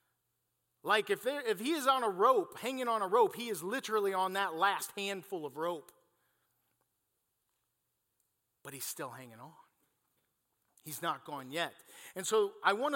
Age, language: 40-59, English